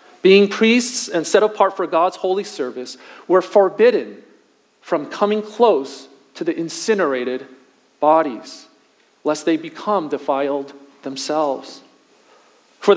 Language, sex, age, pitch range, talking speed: English, male, 40-59, 145-210 Hz, 110 wpm